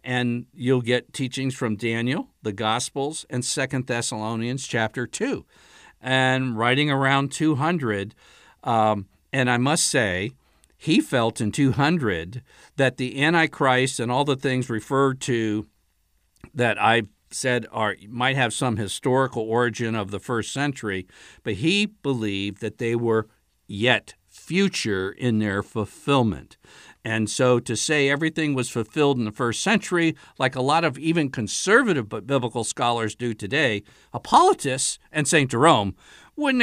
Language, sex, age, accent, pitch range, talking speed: English, male, 60-79, American, 115-145 Hz, 145 wpm